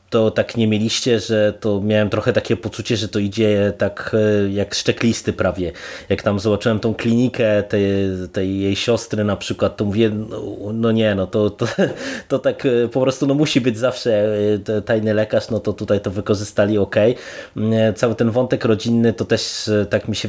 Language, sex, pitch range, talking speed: Polish, male, 105-120 Hz, 180 wpm